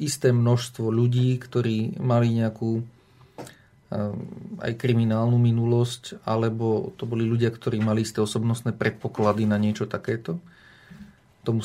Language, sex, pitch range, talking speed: Slovak, male, 110-125 Hz, 120 wpm